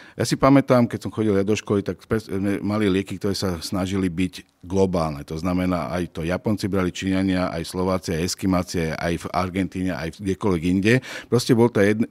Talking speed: 185 wpm